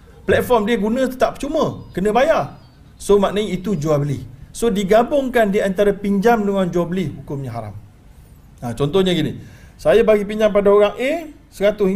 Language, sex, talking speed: Malayalam, male, 160 wpm